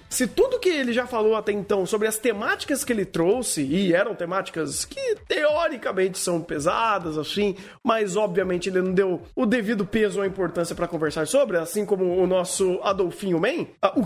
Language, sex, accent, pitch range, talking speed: Portuguese, male, Brazilian, 195-295 Hz, 180 wpm